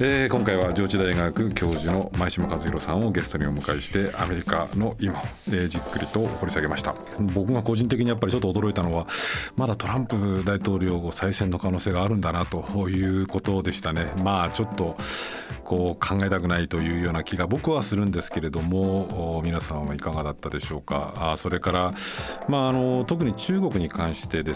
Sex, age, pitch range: male, 40-59, 85-105 Hz